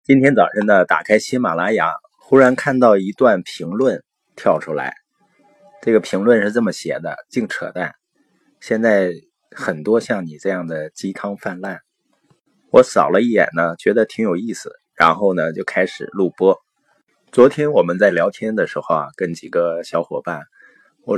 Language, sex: Chinese, male